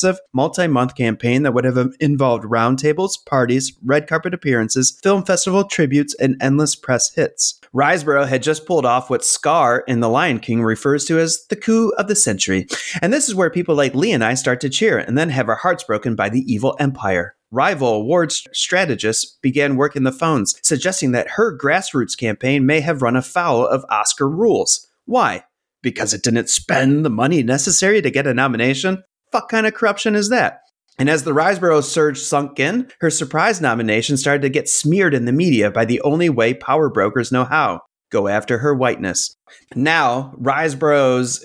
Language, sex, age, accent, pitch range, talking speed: English, male, 30-49, American, 120-160 Hz, 185 wpm